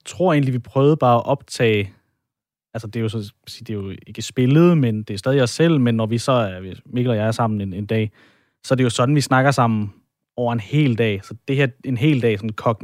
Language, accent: Danish, native